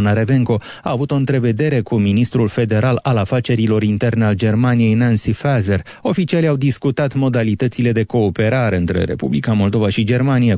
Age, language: 30-49, Romanian